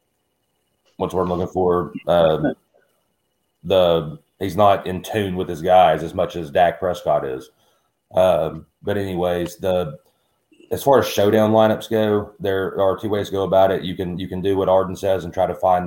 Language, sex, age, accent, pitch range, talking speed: English, male, 30-49, American, 85-100 Hz, 190 wpm